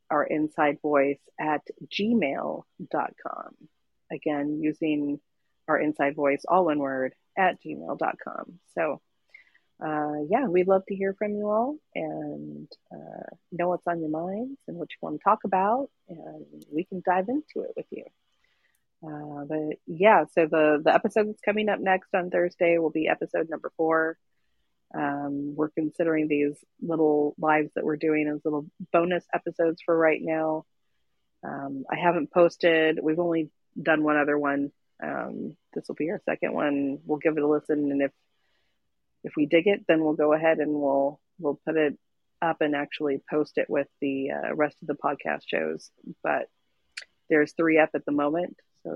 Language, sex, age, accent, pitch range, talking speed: English, female, 30-49, American, 145-175 Hz, 170 wpm